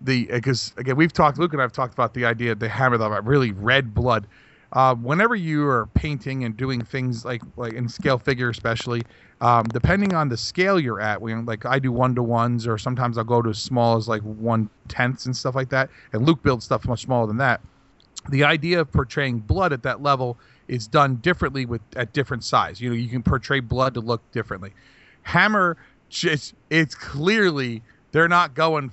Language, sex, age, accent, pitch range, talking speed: English, male, 40-59, American, 120-150 Hz, 210 wpm